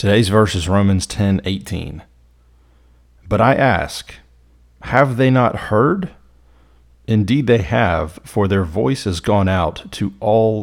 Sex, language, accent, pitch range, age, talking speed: male, English, American, 80-100 Hz, 30-49, 135 wpm